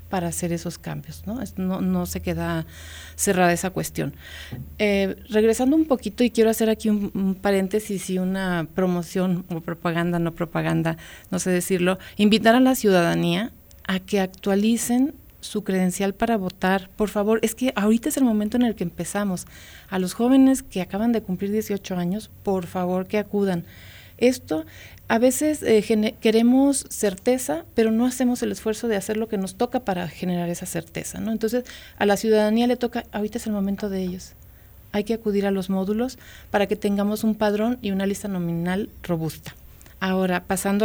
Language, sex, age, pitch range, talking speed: Spanish, female, 40-59, 180-215 Hz, 180 wpm